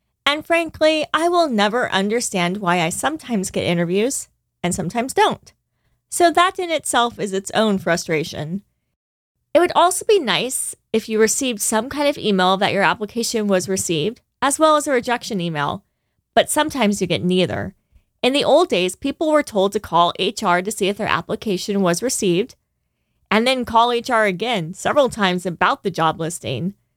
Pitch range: 185-260 Hz